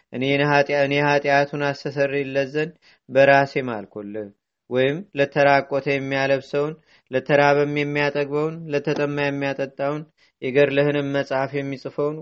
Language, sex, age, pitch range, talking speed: Amharic, male, 30-49, 135-145 Hz, 65 wpm